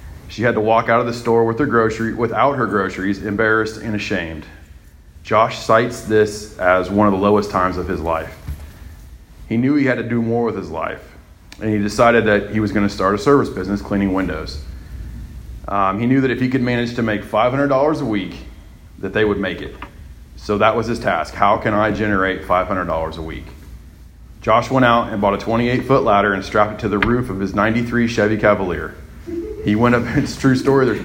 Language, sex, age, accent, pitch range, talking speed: English, male, 30-49, American, 90-115 Hz, 215 wpm